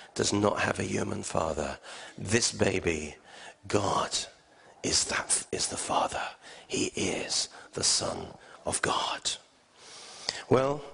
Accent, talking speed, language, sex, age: British, 115 wpm, English, male, 40-59